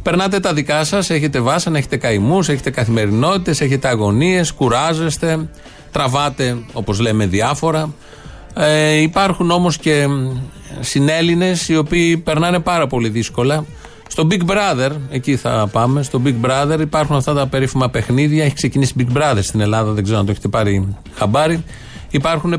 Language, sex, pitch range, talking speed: Greek, male, 115-150 Hz, 150 wpm